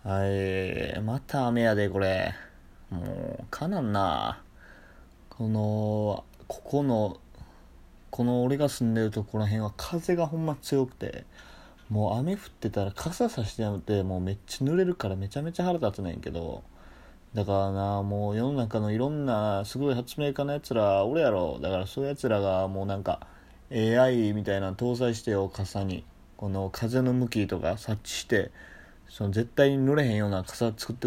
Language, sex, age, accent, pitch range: Japanese, male, 20-39, native, 100-125 Hz